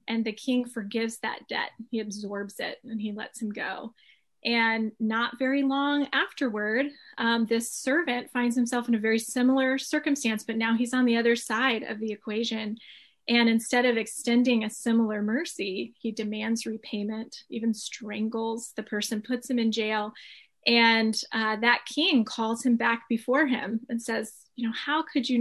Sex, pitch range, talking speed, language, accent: female, 220-255 Hz, 170 wpm, English, American